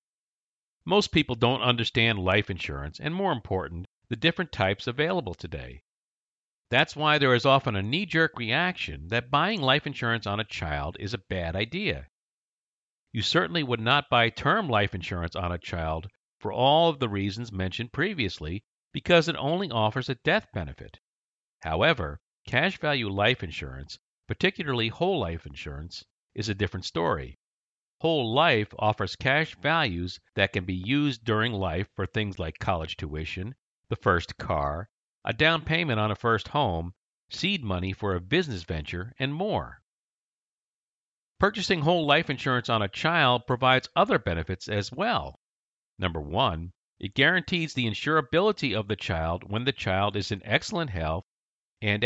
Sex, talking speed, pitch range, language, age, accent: male, 155 wpm, 95-140 Hz, English, 50-69, American